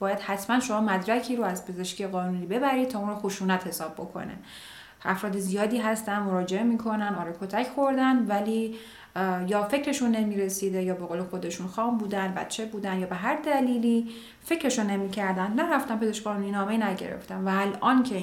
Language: Persian